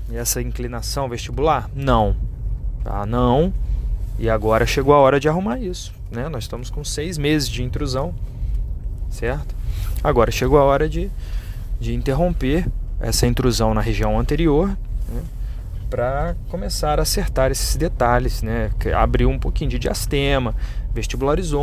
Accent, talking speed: Brazilian, 140 wpm